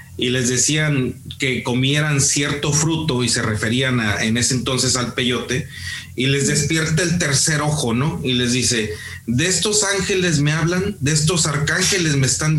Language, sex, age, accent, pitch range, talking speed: Spanish, male, 40-59, Mexican, 120-165 Hz, 170 wpm